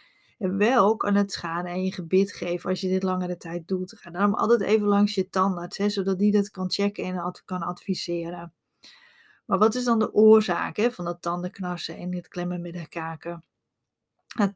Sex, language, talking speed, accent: female, Dutch, 185 wpm, Dutch